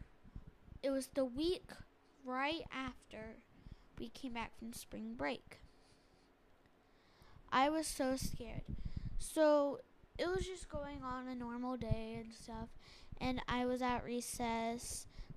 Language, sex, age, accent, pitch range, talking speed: English, female, 10-29, American, 230-260 Hz, 125 wpm